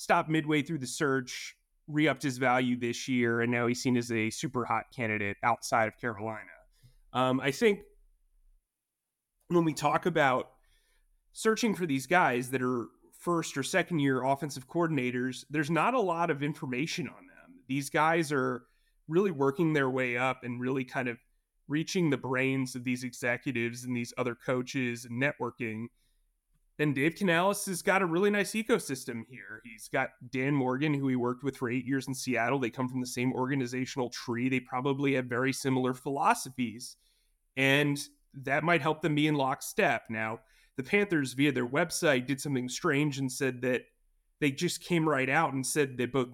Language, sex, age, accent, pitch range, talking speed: English, male, 30-49, American, 125-155 Hz, 175 wpm